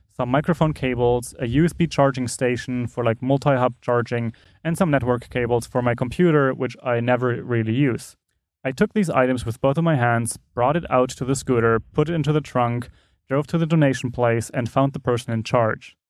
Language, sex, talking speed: English, male, 200 wpm